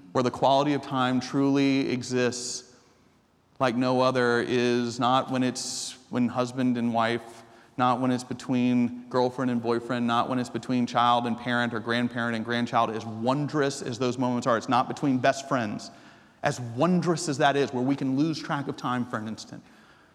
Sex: male